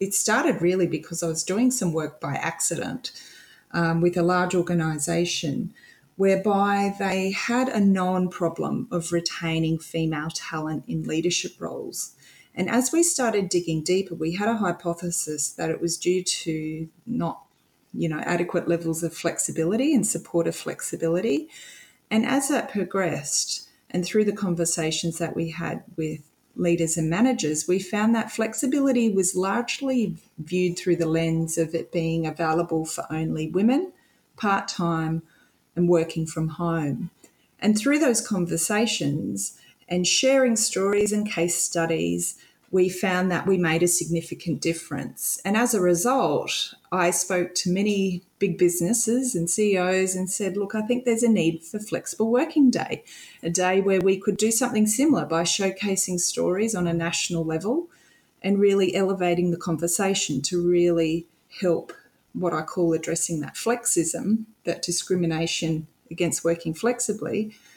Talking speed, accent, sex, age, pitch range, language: 150 wpm, Australian, female, 30-49, 165-210 Hz, English